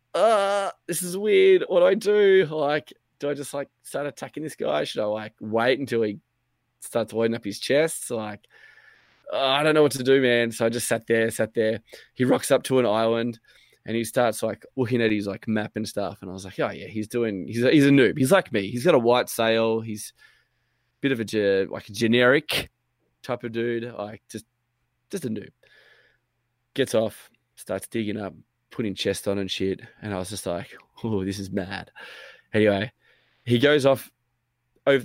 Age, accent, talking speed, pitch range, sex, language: 20-39, Australian, 210 wpm, 105-125 Hz, male, English